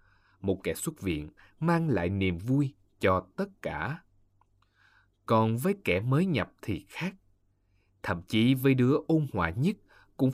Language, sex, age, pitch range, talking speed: Vietnamese, male, 20-39, 95-135 Hz, 150 wpm